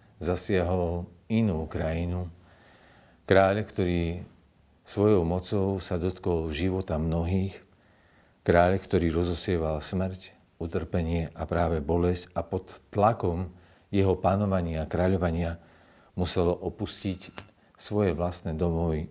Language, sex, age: Slovak, male, 50-69